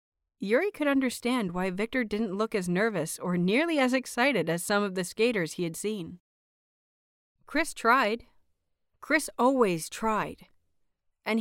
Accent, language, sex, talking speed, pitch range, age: American, English, female, 140 wpm, 175-235 Hz, 40-59